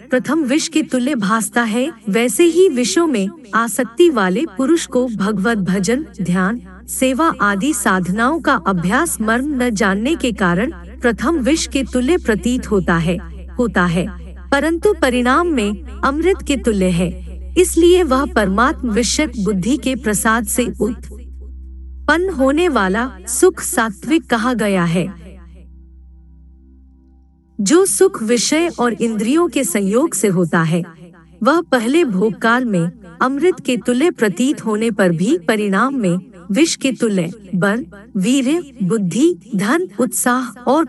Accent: native